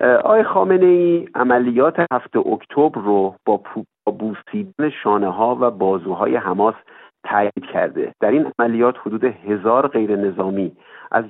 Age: 50-69